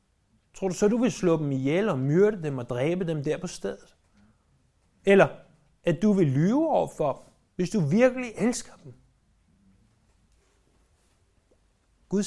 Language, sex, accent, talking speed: Danish, male, native, 145 wpm